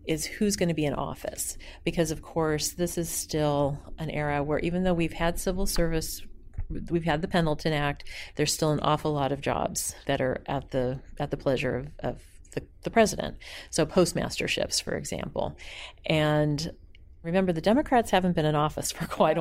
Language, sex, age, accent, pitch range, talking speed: English, female, 40-59, American, 145-170 Hz, 185 wpm